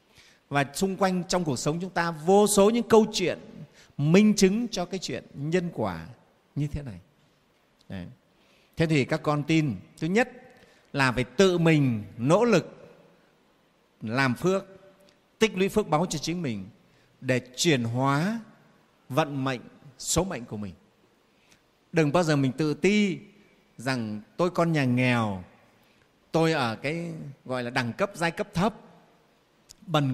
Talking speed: 150 wpm